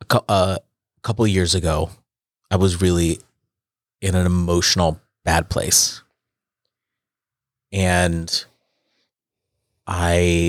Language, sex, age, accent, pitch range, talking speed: English, male, 30-49, American, 85-110 Hz, 85 wpm